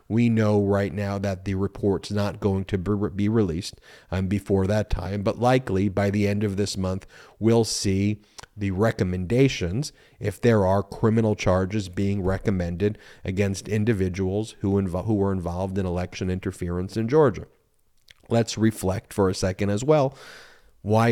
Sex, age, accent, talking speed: male, 30-49, American, 155 wpm